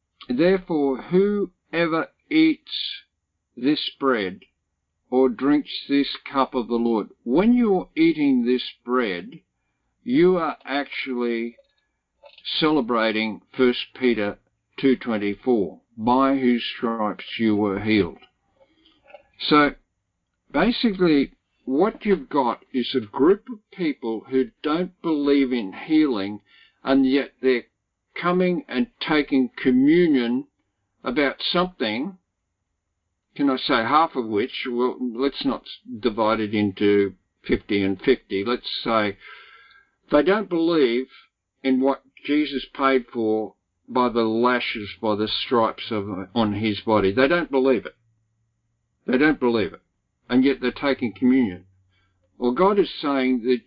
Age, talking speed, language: 50-69, 120 wpm, English